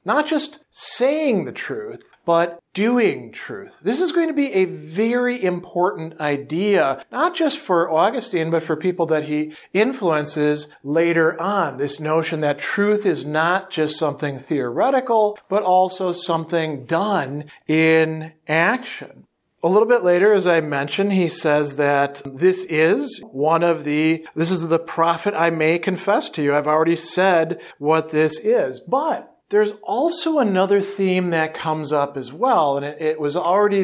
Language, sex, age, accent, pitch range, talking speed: English, male, 50-69, American, 155-210 Hz, 160 wpm